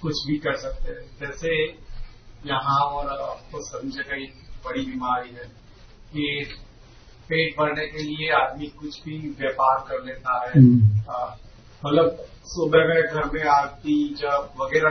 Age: 40-59